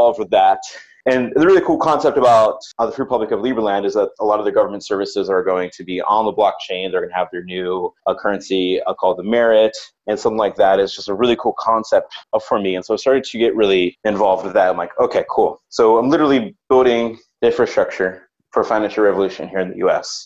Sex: male